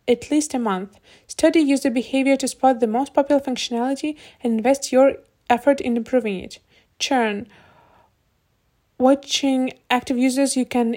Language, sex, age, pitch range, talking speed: English, female, 20-39, 235-275 Hz, 140 wpm